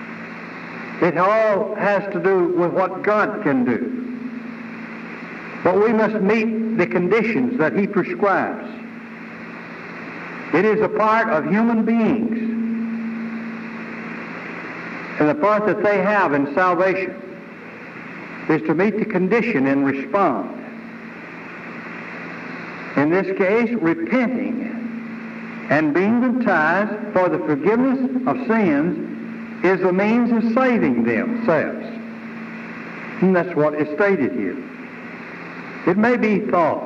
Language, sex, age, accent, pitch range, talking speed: English, male, 60-79, American, 200-235 Hz, 110 wpm